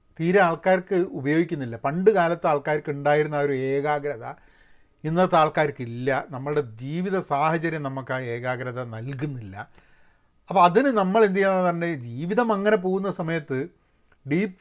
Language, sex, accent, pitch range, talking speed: Malayalam, male, native, 145-220 Hz, 125 wpm